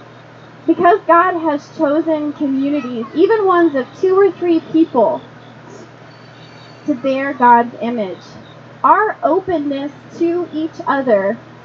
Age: 20-39